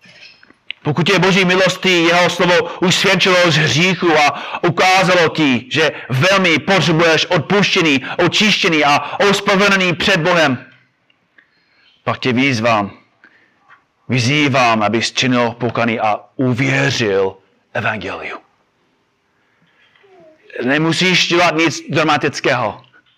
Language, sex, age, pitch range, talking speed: Czech, male, 30-49, 140-185 Hz, 90 wpm